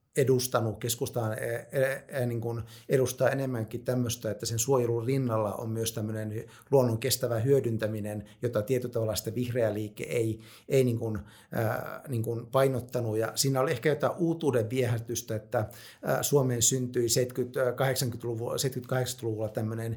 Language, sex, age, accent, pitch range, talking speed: Finnish, male, 50-69, native, 115-135 Hz, 110 wpm